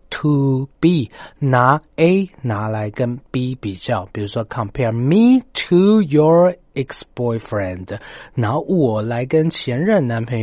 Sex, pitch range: male, 105-145 Hz